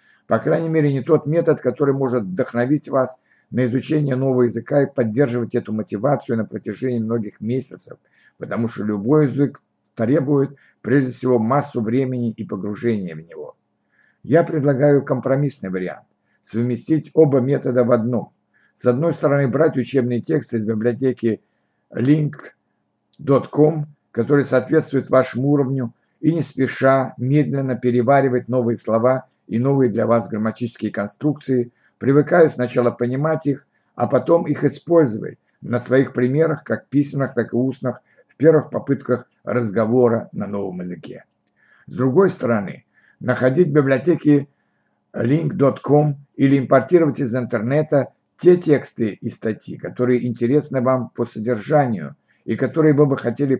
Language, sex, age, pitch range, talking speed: Russian, male, 60-79, 120-145 Hz, 135 wpm